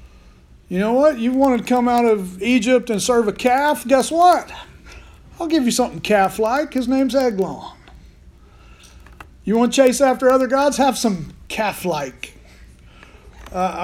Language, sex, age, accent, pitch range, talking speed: English, male, 40-59, American, 165-210 Hz, 160 wpm